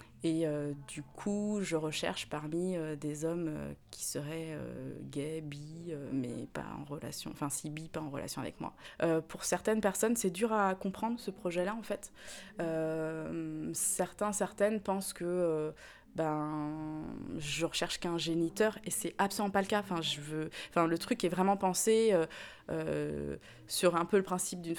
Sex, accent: female, French